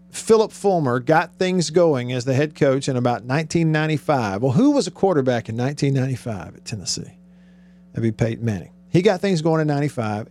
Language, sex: English, male